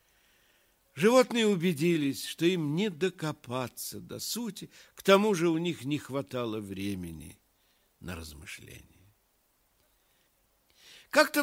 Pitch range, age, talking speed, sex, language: 150-250 Hz, 60-79, 100 wpm, male, Russian